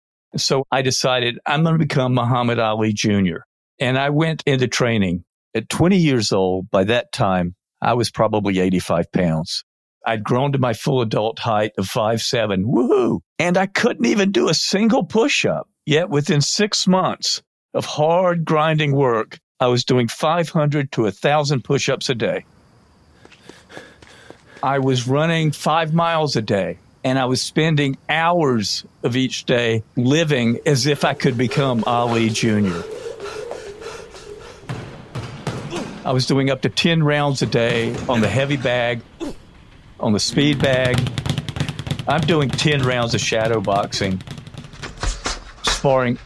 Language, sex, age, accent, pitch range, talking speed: English, male, 50-69, American, 115-155 Hz, 145 wpm